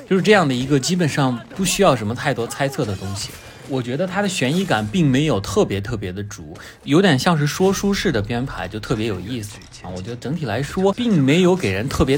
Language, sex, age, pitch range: Chinese, male, 20-39, 100-145 Hz